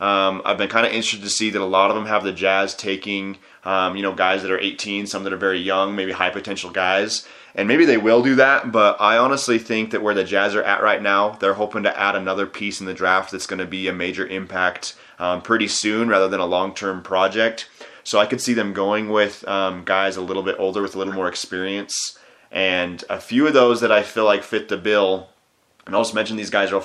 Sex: male